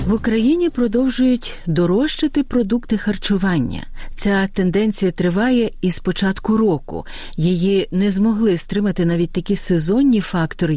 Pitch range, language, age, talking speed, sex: 160-235 Hz, Ukrainian, 50-69, 115 wpm, female